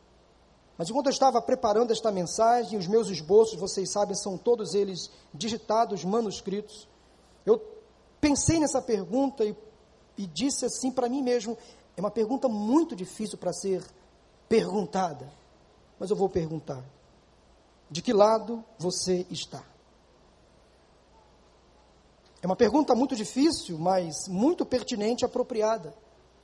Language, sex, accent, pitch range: Portuguese, male, Brazilian, 200-250 Hz